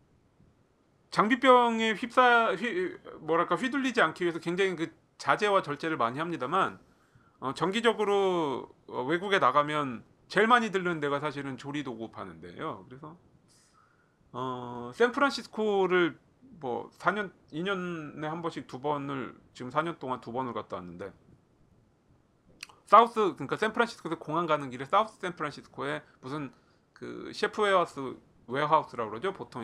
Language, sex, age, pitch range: Korean, male, 40-59, 130-210 Hz